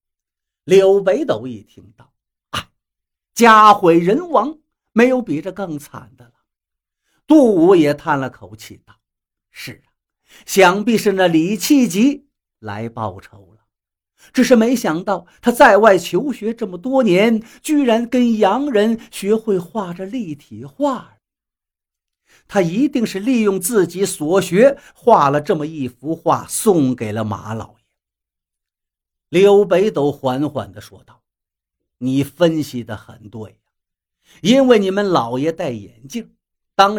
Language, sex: Chinese, male